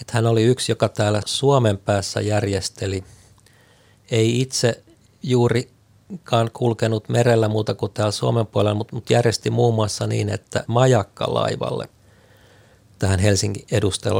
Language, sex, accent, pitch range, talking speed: Finnish, male, native, 100-115 Hz, 125 wpm